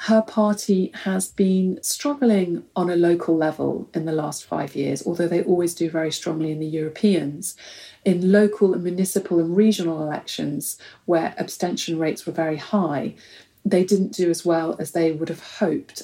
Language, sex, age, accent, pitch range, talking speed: English, female, 40-59, British, 165-200 Hz, 170 wpm